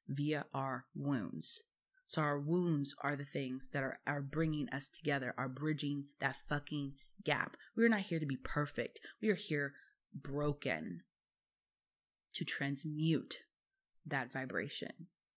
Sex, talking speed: female, 135 wpm